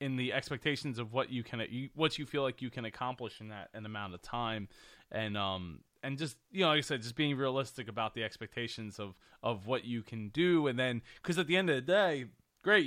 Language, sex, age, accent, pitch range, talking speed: English, male, 20-39, American, 115-145 Hz, 240 wpm